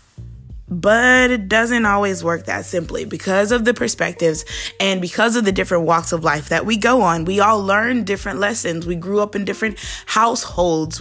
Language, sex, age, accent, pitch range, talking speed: English, female, 20-39, American, 175-225 Hz, 185 wpm